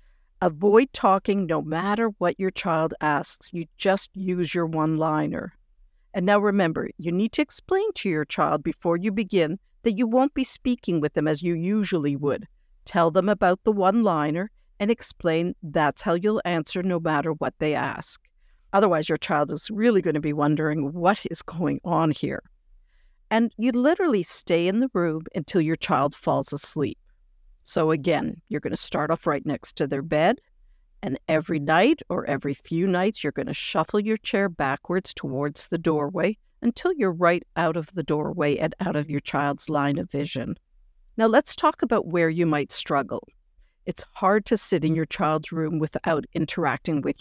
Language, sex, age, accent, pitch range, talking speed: English, female, 50-69, American, 155-205 Hz, 180 wpm